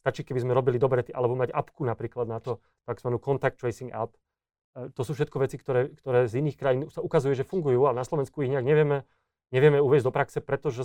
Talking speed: 220 wpm